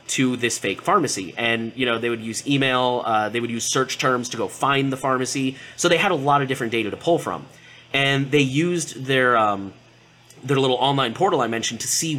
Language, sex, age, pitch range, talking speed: English, male, 30-49, 120-150 Hz, 225 wpm